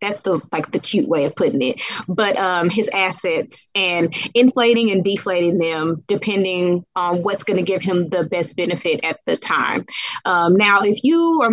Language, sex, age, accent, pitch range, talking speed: English, female, 20-39, American, 170-205 Hz, 185 wpm